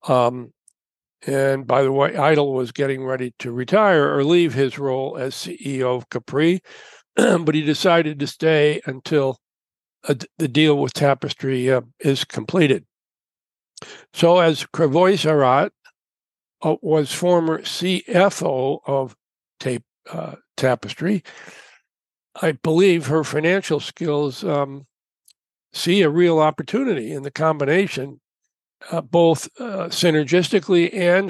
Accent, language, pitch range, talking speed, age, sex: American, English, 135-170 Hz, 120 wpm, 60-79, male